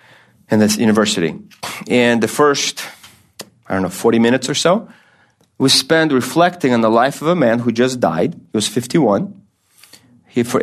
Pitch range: 105-125 Hz